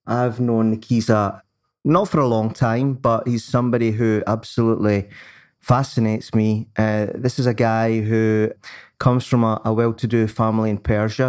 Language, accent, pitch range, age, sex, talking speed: English, British, 110-120 Hz, 20-39, male, 155 wpm